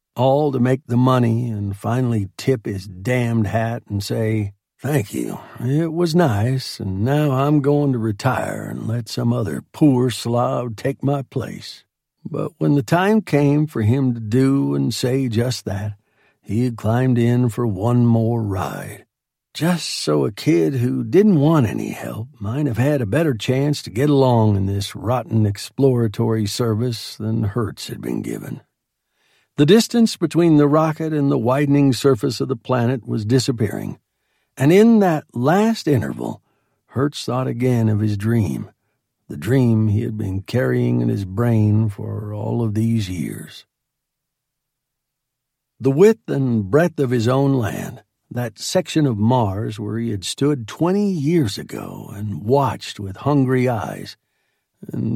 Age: 60-79